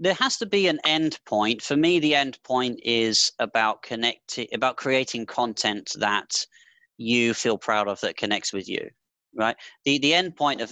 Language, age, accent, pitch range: English, 30-49, British, 115-175 Hz